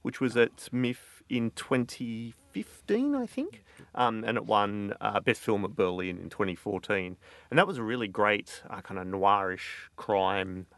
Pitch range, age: 100-125 Hz, 30-49